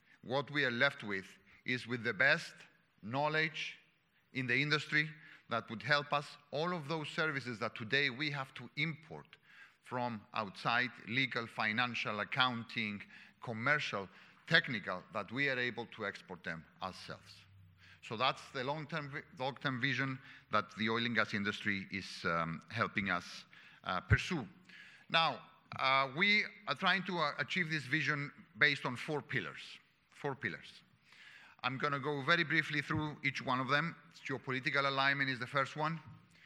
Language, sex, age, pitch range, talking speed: English, male, 50-69, 120-155 Hz, 150 wpm